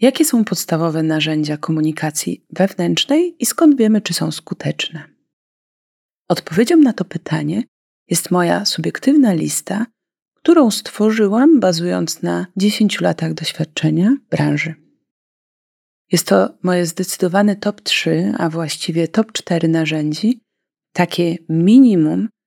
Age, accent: 30-49, native